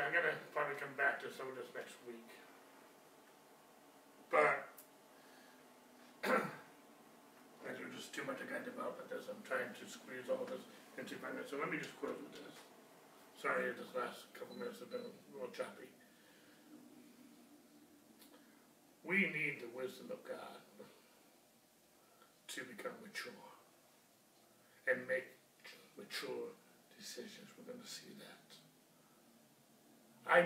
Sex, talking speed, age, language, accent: male, 135 wpm, 60-79, English, American